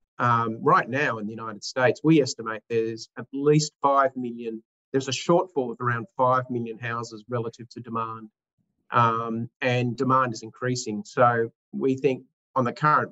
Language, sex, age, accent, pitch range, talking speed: English, male, 40-59, Australian, 115-135 Hz, 165 wpm